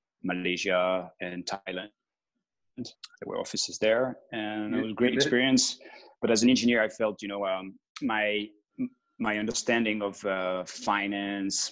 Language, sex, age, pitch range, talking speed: English, male, 20-39, 95-110 Hz, 145 wpm